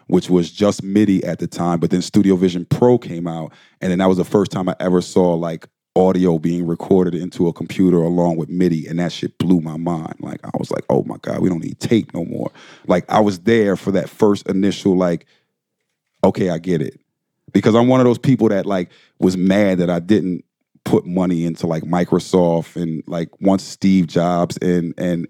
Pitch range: 90-110 Hz